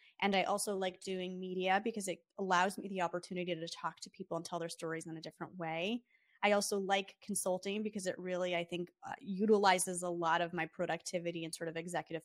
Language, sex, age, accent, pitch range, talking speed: English, female, 20-39, American, 170-205 Hz, 215 wpm